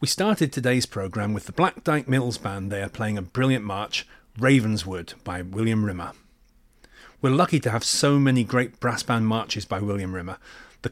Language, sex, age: English, male, 30-49